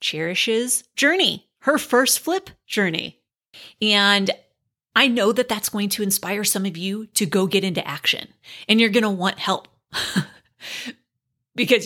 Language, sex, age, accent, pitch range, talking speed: English, female, 30-49, American, 190-250 Hz, 145 wpm